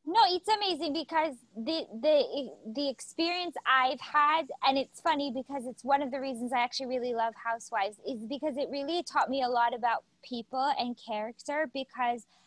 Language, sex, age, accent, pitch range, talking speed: English, female, 20-39, American, 215-265 Hz, 180 wpm